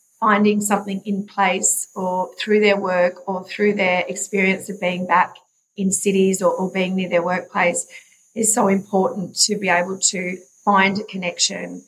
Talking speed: 165 wpm